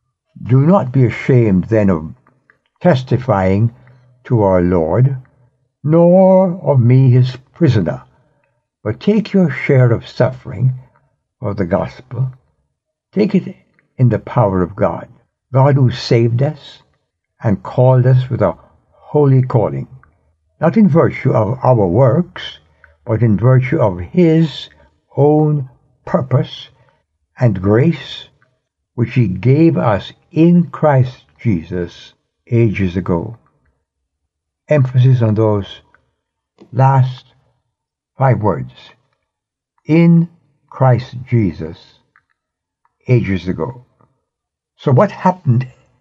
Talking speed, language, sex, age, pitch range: 105 wpm, English, male, 60-79, 105-135 Hz